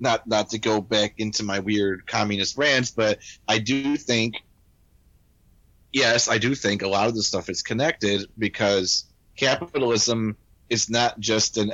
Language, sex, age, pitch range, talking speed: English, male, 30-49, 100-120 Hz, 160 wpm